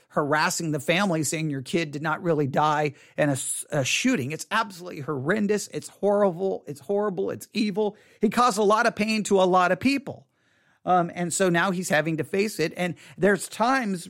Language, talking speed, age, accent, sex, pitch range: English, 200 wpm, 40-59, American, male, 150-200 Hz